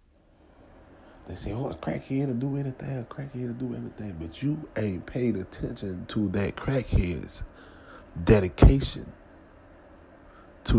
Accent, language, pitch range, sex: American, English, 90-120 Hz, male